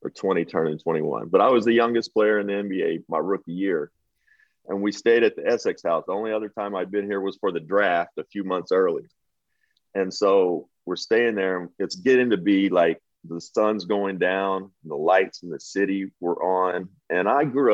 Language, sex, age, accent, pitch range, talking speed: English, male, 40-59, American, 95-125 Hz, 210 wpm